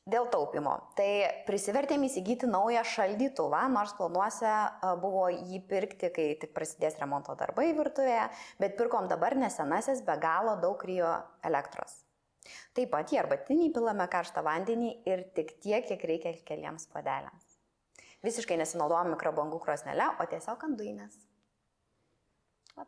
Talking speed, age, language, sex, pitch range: 125 wpm, 20-39, English, female, 155-230 Hz